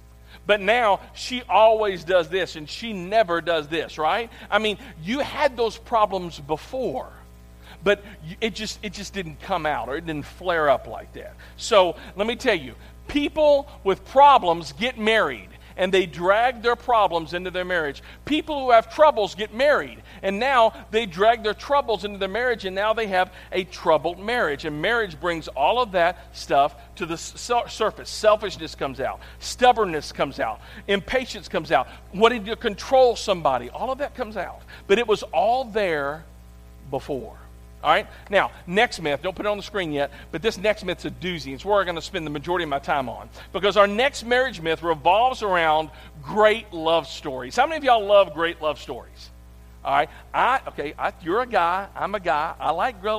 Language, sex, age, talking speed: English, male, 50-69, 185 wpm